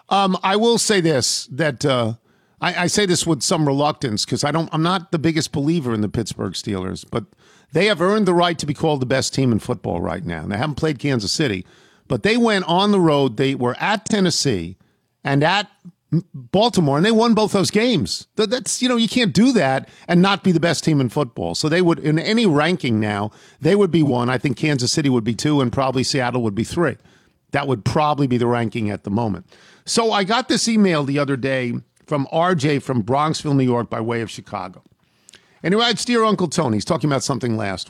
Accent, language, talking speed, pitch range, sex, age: American, English, 225 wpm, 125-180 Hz, male, 50-69